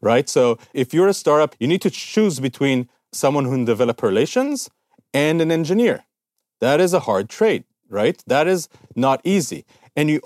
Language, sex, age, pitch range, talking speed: English, male, 40-59, 125-170 Hz, 180 wpm